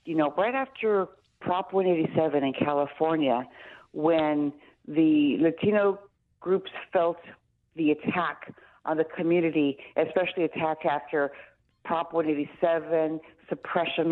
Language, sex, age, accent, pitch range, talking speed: English, female, 50-69, American, 150-185 Hz, 100 wpm